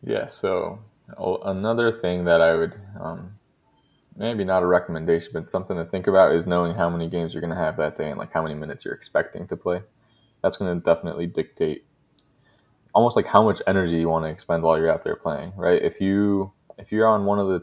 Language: English